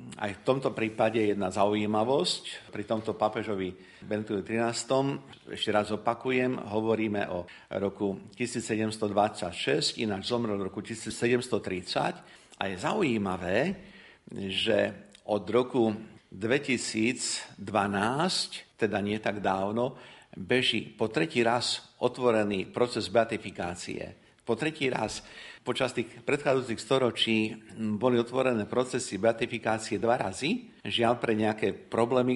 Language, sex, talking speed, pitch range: Slovak, male, 110 wpm, 100-120 Hz